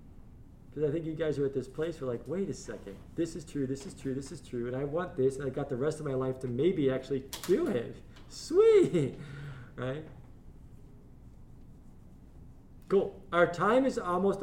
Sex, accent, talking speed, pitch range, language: male, American, 195 wpm, 120-160 Hz, English